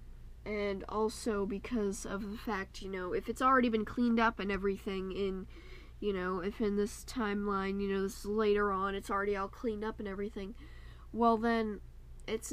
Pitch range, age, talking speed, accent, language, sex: 195-225 Hz, 10-29, 185 wpm, American, English, female